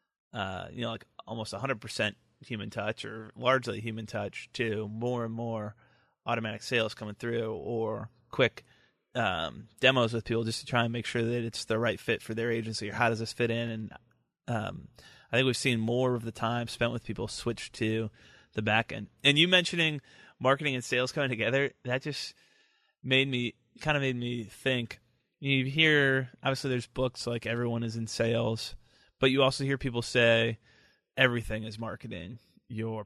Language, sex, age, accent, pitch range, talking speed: English, male, 30-49, American, 110-125 Hz, 190 wpm